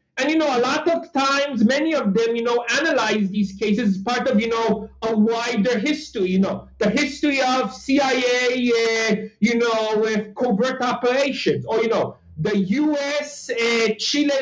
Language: English